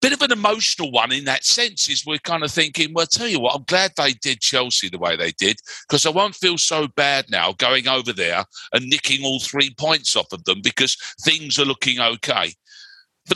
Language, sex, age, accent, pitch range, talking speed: English, male, 50-69, British, 125-170 Hz, 225 wpm